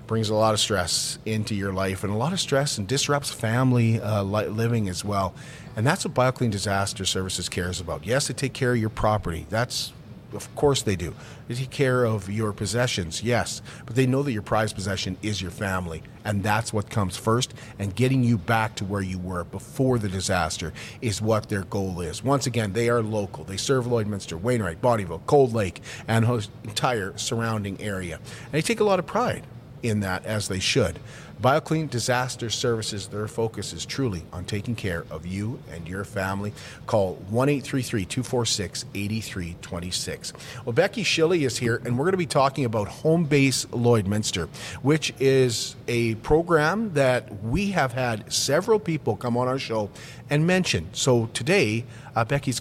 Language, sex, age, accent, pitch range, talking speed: English, male, 40-59, American, 105-130 Hz, 185 wpm